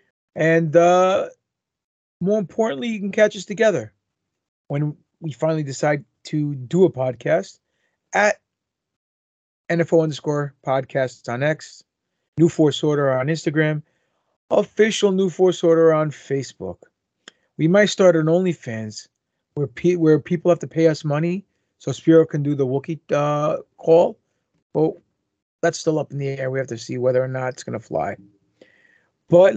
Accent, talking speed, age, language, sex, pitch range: American, 150 wpm, 30-49, English, male, 130-175 Hz